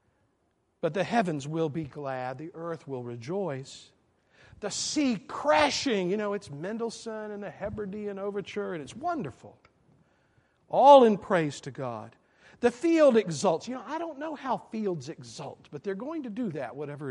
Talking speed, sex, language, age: 165 wpm, male, English, 50-69